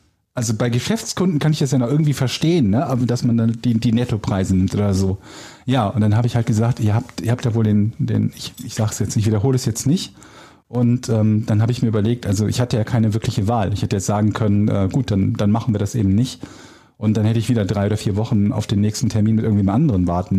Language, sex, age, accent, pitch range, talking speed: German, male, 40-59, German, 105-135 Hz, 270 wpm